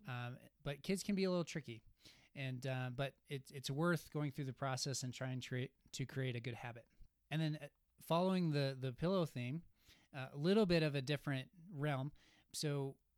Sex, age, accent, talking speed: male, 20-39, American, 195 wpm